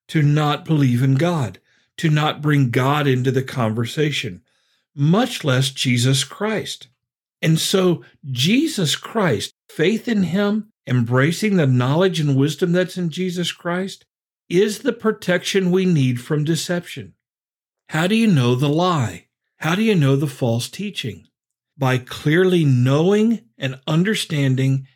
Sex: male